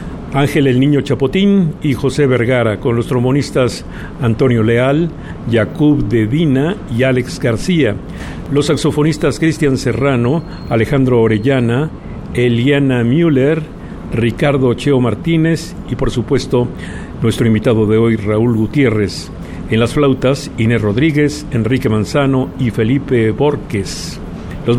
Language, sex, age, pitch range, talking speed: Spanish, male, 50-69, 115-145 Hz, 120 wpm